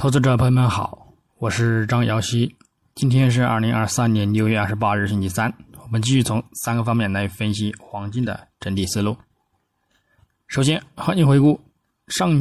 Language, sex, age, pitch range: Chinese, male, 20-39, 105-135 Hz